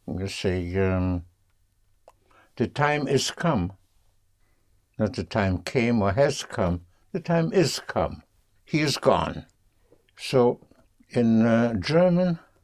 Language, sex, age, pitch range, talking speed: English, male, 60-79, 95-120 Hz, 120 wpm